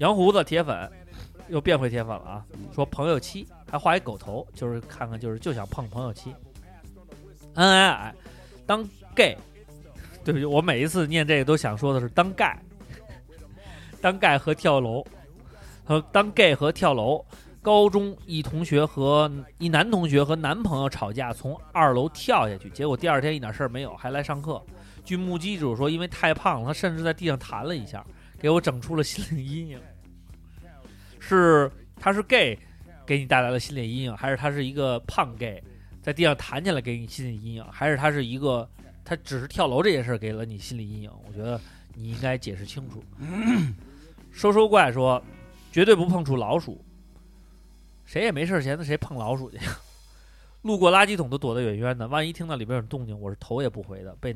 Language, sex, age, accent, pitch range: Chinese, male, 30-49, native, 105-155 Hz